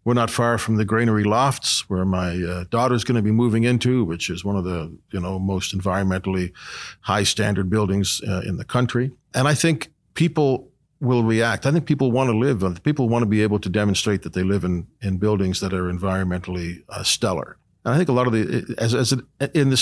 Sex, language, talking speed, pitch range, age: male, English, 225 wpm, 100-125 Hz, 50-69